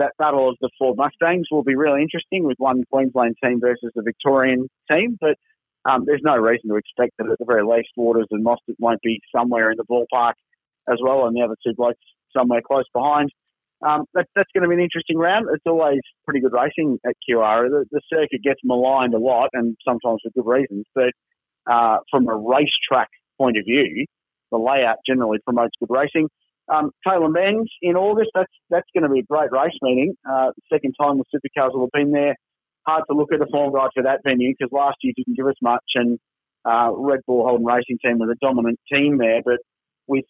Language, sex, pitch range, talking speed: English, male, 120-150 Hz, 215 wpm